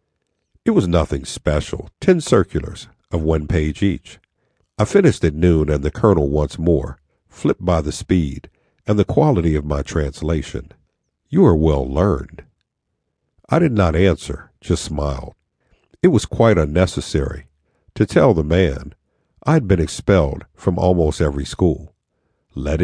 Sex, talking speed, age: male, 145 wpm, 60-79